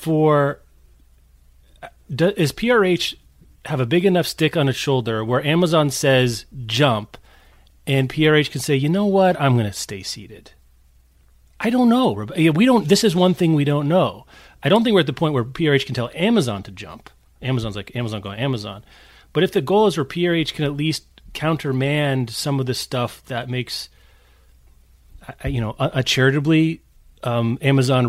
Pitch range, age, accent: 115-155 Hz, 30-49, American